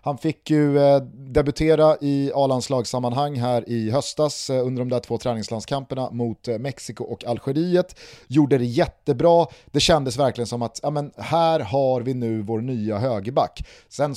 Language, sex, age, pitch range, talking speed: Swedish, male, 30-49, 115-145 Hz, 150 wpm